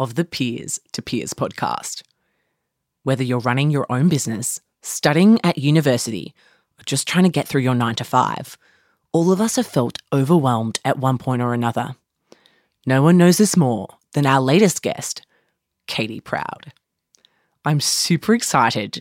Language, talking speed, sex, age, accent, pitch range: English, 160 wpm, female, 20-39, Australian, 125-165 Hz